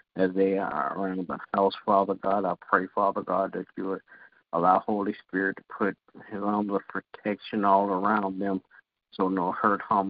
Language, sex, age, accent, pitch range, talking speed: English, male, 50-69, American, 95-105 Hz, 185 wpm